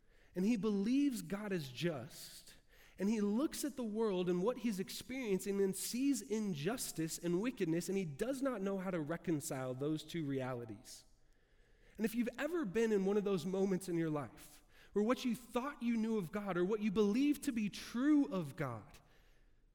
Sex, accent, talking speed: male, American, 190 wpm